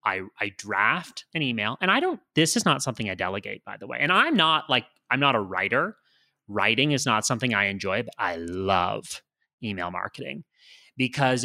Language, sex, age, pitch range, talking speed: English, male, 30-49, 125-170 Hz, 195 wpm